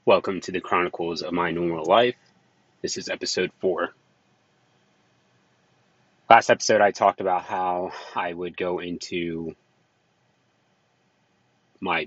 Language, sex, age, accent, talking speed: English, male, 30-49, American, 115 wpm